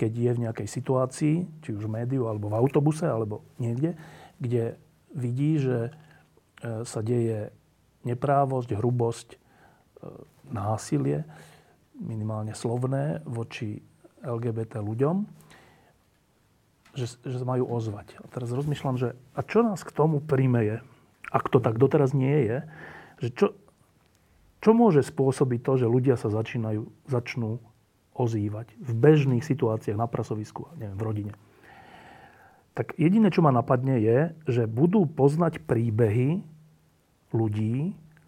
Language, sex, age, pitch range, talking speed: Slovak, male, 40-59, 115-145 Hz, 120 wpm